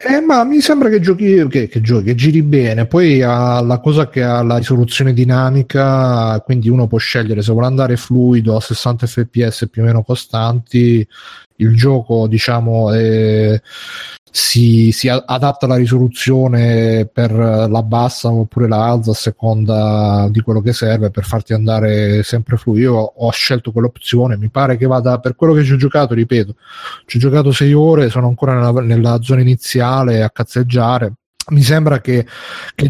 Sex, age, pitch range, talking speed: male, 30-49, 110-130 Hz, 170 wpm